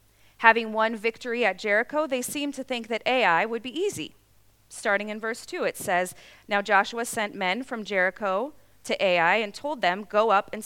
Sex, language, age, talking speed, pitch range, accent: female, English, 30-49, 190 wpm, 160-245 Hz, American